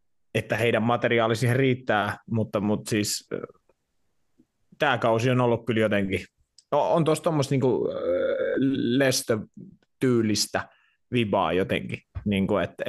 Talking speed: 100 wpm